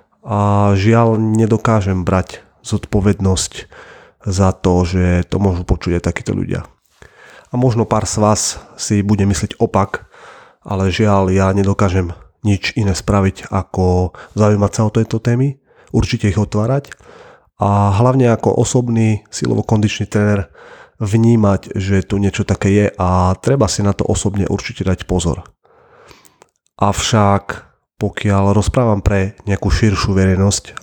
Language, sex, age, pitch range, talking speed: Slovak, male, 30-49, 95-105 Hz, 130 wpm